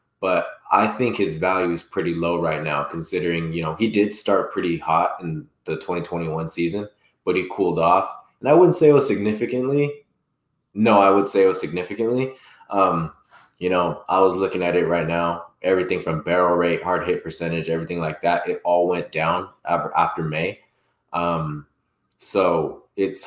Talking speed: 180 wpm